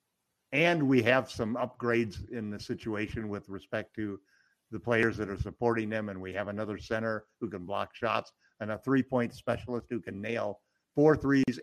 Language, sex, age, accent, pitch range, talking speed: English, male, 50-69, American, 110-135 Hz, 180 wpm